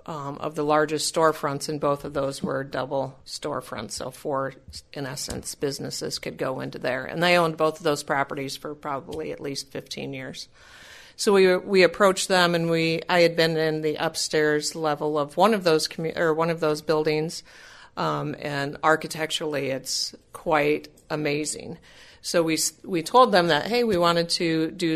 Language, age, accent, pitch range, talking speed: English, 50-69, American, 150-185 Hz, 180 wpm